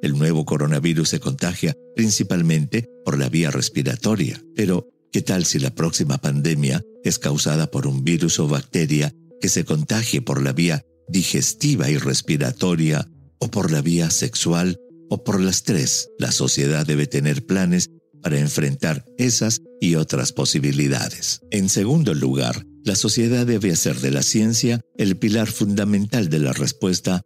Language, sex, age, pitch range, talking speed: English, male, 50-69, 75-120 Hz, 150 wpm